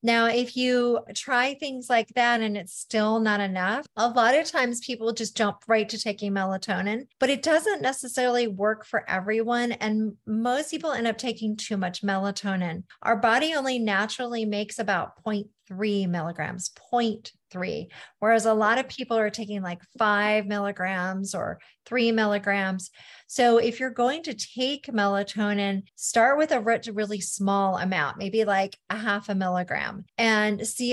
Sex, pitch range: female, 200-240 Hz